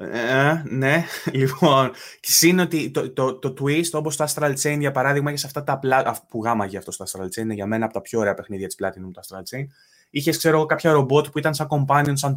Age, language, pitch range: 20-39, Greek, 125-155 Hz